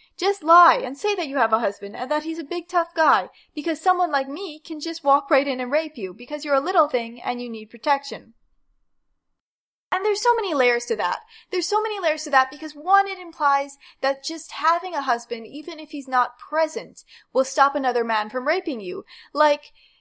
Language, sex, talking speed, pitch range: English, female, 215 wpm, 255-335 Hz